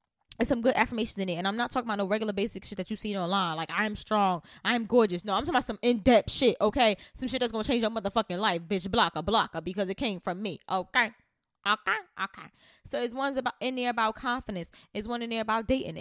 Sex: female